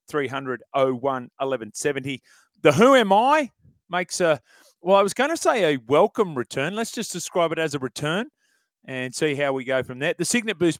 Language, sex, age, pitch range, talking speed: English, male, 30-49, 120-160 Hz, 195 wpm